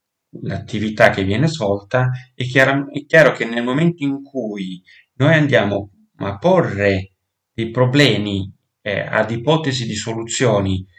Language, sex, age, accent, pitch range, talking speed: Italian, male, 30-49, native, 105-130 Hz, 130 wpm